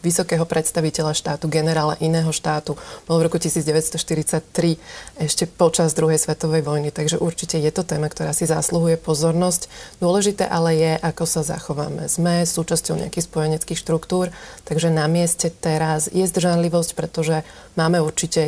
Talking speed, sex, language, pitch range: 145 wpm, female, Slovak, 155-175 Hz